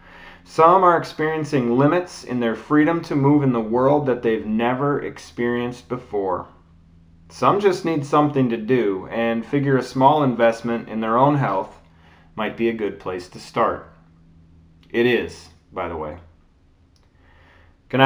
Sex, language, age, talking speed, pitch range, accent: male, English, 30-49, 150 wpm, 85-135 Hz, American